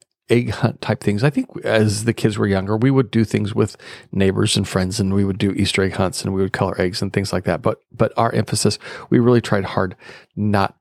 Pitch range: 100-125 Hz